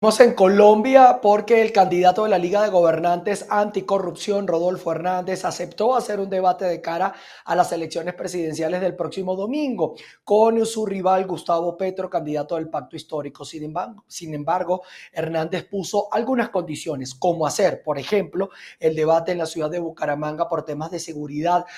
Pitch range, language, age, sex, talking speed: 160-200 Hz, Spanish, 30-49, male, 165 wpm